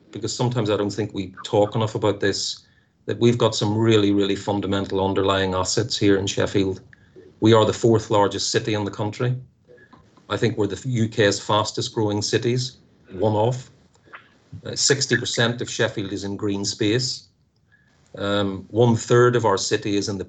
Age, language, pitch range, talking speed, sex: 40-59, English, 105-125 Hz, 170 wpm, male